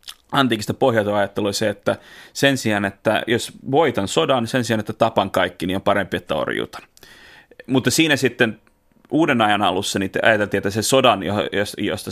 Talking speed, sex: 165 wpm, male